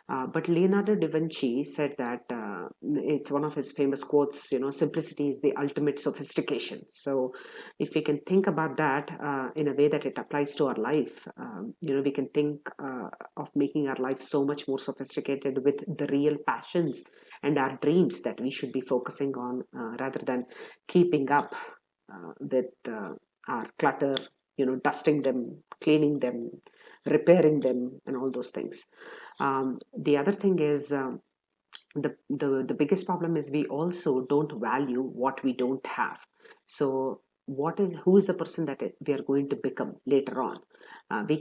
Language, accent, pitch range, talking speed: English, Indian, 135-160 Hz, 180 wpm